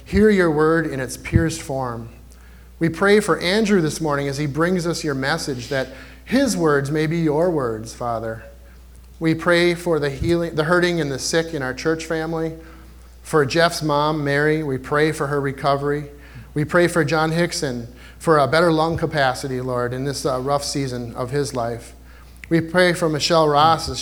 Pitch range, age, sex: 130-160 Hz, 30-49, male